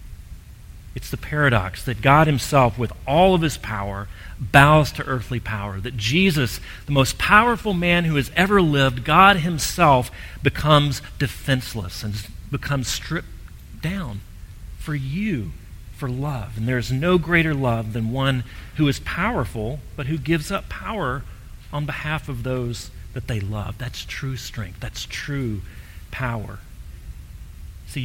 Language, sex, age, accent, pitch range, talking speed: English, male, 40-59, American, 100-145 Hz, 145 wpm